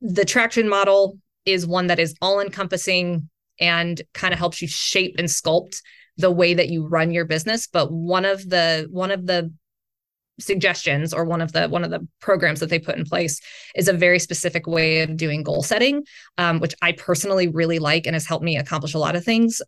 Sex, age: female, 20-39